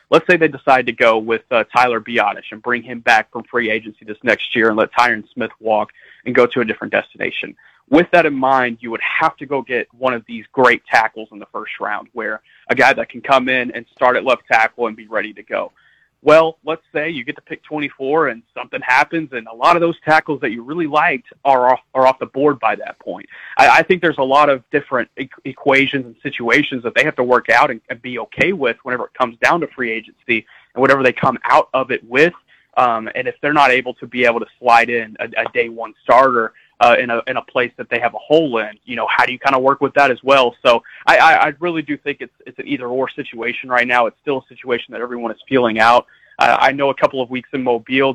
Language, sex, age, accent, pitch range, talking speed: English, male, 30-49, American, 115-140 Hz, 260 wpm